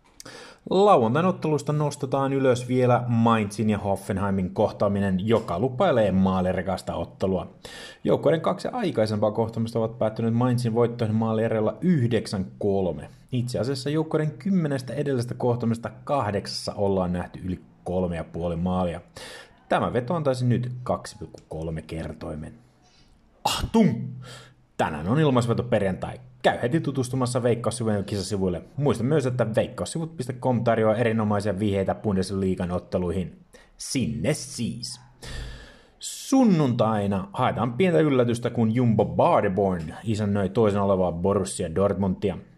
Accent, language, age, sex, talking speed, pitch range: native, Finnish, 30-49, male, 105 wpm, 100-125 Hz